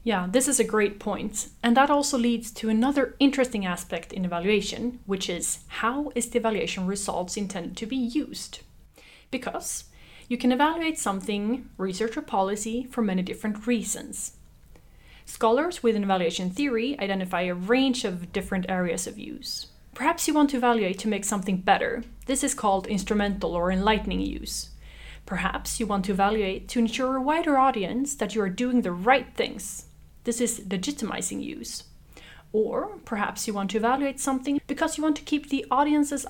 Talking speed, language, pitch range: 170 wpm, English, 200-260 Hz